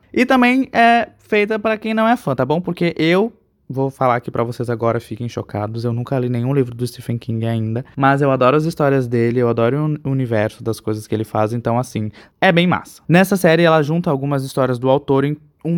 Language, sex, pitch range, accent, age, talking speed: Portuguese, male, 125-170 Hz, Brazilian, 20-39, 230 wpm